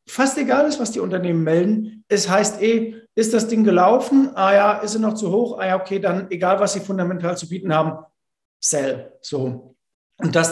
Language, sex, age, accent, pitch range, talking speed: German, male, 50-69, German, 165-200 Hz, 205 wpm